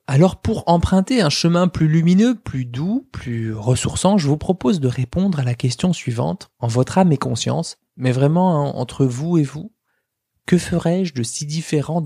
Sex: male